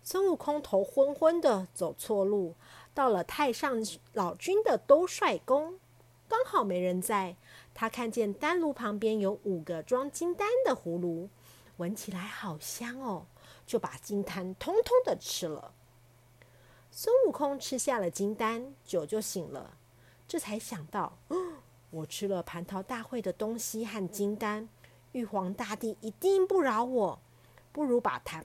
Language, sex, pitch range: Chinese, female, 185-295 Hz